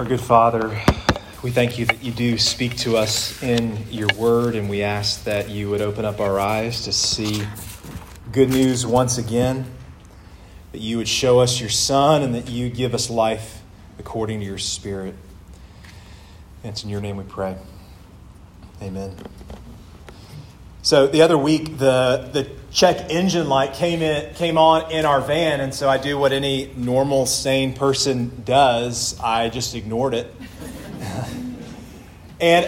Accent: American